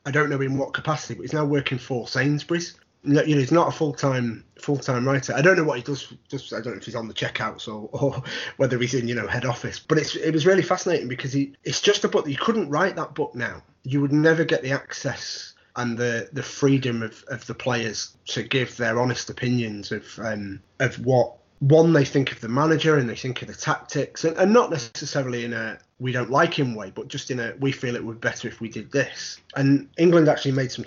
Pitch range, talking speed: 115-150 Hz, 250 wpm